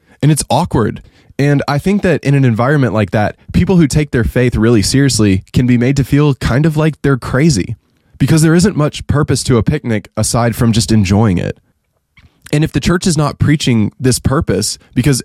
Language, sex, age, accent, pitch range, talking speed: English, male, 20-39, American, 110-145 Hz, 205 wpm